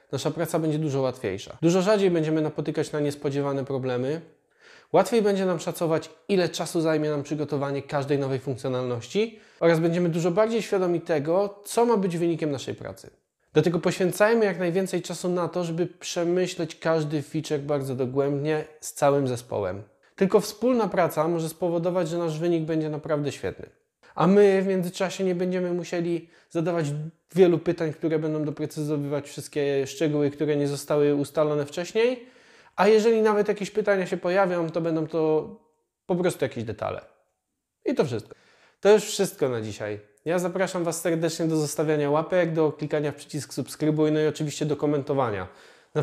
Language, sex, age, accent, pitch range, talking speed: Polish, male, 20-39, native, 150-180 Hz, 160 wpm